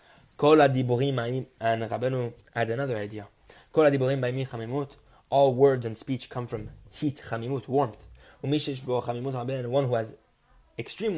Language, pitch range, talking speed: English, 115-140 Hz, 90 wpm